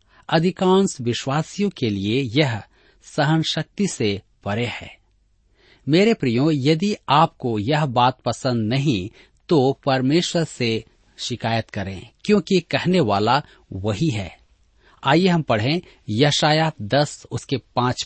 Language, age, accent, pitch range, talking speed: Hindi, 40-59, native, 110-165 Hz, 115 wpm